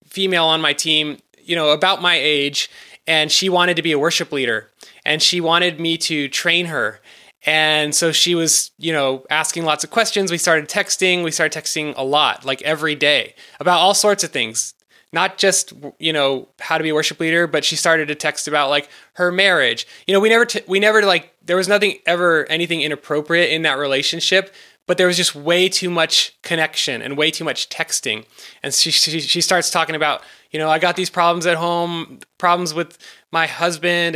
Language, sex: English, male